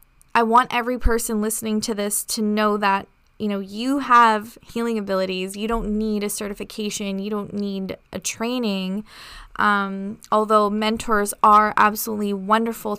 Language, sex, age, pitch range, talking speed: English, female, 20-39, 205-235 Hz, 150 wpm